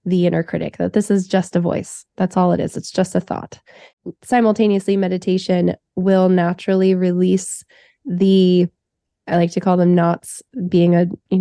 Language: English